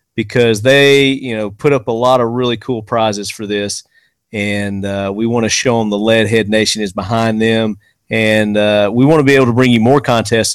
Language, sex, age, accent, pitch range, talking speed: English, male, 40-59, American, 110-140 Hz, 220 wpm